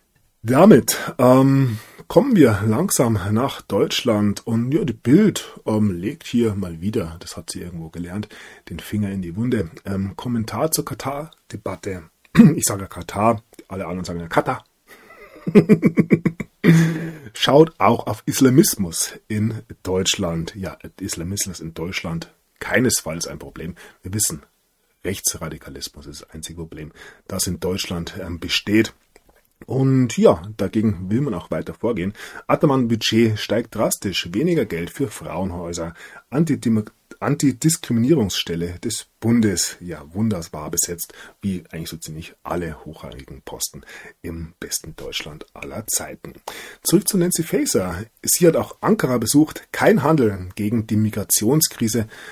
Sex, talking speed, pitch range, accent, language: male, 125 wpm, 90-130 Hz, German, German